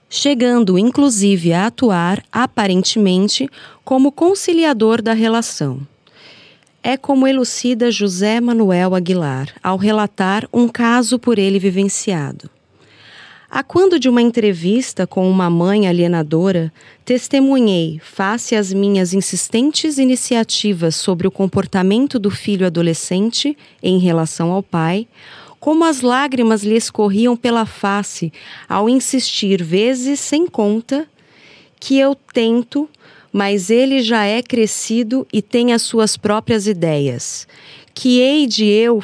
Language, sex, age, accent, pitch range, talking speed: Portuguese, female, 30-49, Brazilian, 195-250 Hz, 120 wpm